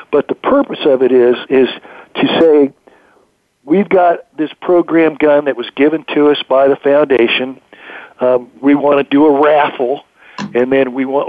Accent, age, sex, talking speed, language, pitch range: American, 50-69, male, 175 wpm, English, 125-160 Hz